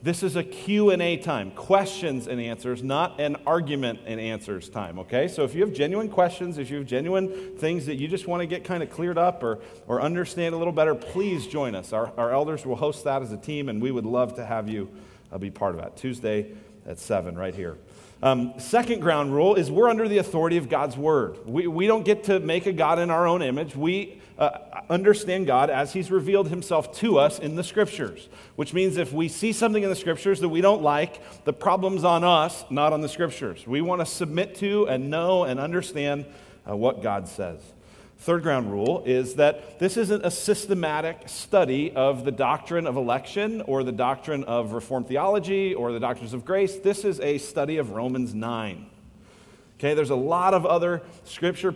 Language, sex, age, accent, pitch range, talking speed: English, male, 40-59, American, 130-185 Hz, 210 wpm